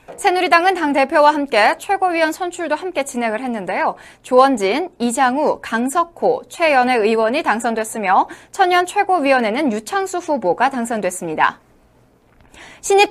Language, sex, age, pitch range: Korean, female, 20-39, 240-340 Hz